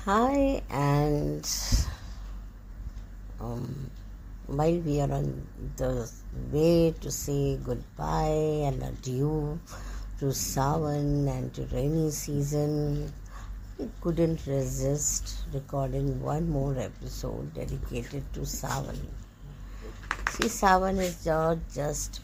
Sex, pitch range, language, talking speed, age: female, 105-155 Hz, English, 95 wpm, 60-79